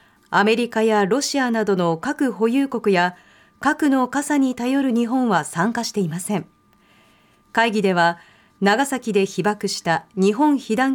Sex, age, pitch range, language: female, 40-59, 190-265 Hz, Japanese